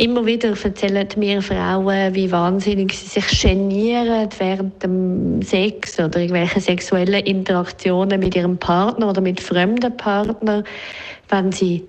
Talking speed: 130 wpm